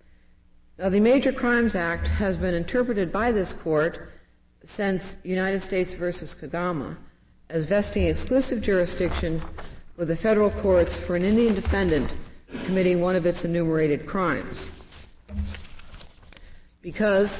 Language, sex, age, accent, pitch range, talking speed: English, female, 50-69, American, 155-195 Hz, 120 wpm